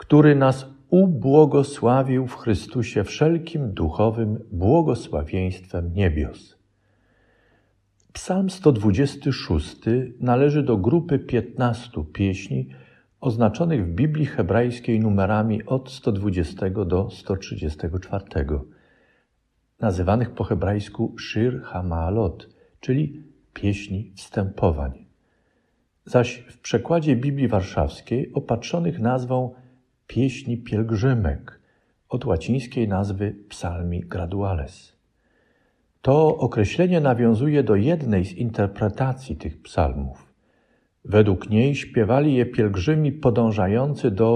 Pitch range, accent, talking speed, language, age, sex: 95-130 Hz, native, 85 wpm, Polish, 50-69, male